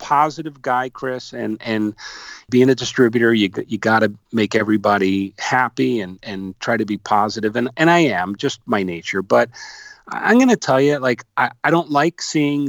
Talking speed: 190 wpm